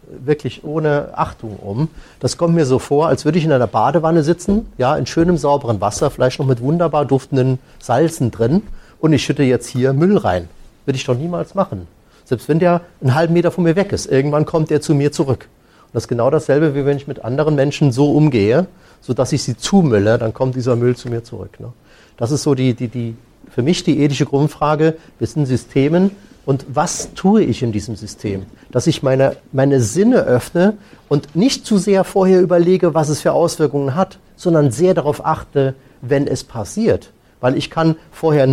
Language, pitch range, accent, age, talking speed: German, 120-160 Hz, German, 40-59, 205 wpm